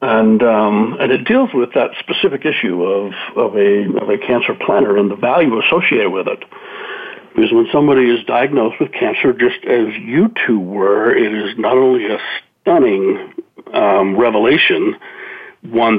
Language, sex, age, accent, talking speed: English, male, 60-79, American, 160 wpm